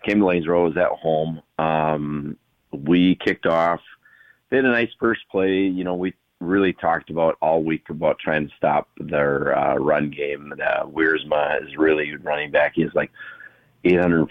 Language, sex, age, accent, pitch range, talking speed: English, male, 40-59, American, 75-90 Hz, 185 wpm